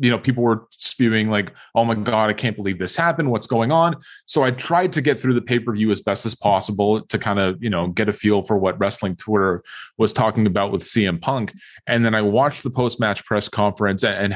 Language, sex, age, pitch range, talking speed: English, male, 30-49, 100-120 Hz, 235 wpm